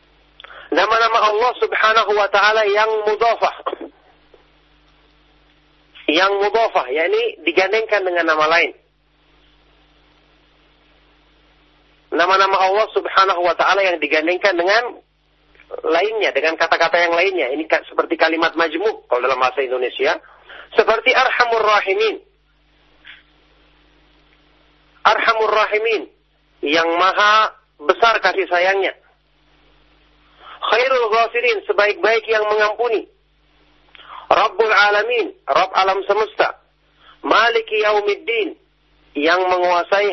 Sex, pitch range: male, 185-235 Hz